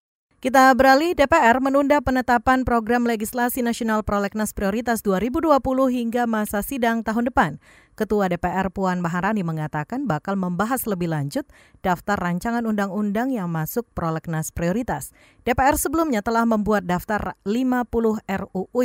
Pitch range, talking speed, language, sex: 170-230 Hz, 125 wpm, Indonesian, female